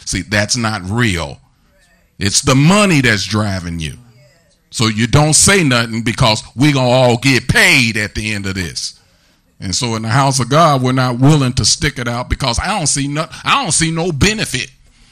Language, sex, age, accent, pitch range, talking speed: English, male, 40-59, American, 120-165 Hz, 190 wpm